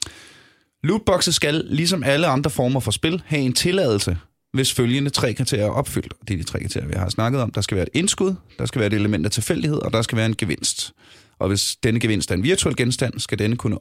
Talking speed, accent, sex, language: 235 wpm, native, male, Danish